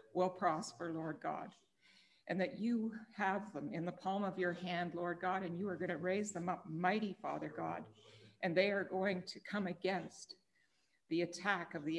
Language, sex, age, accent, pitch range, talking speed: English, female, 60-79, American, 160-190 Hz, 195 wpm